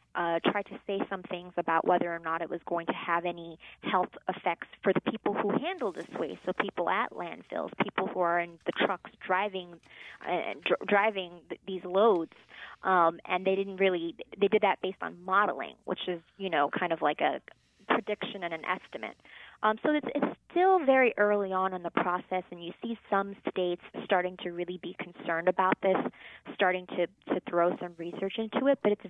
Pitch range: 175-205 Hz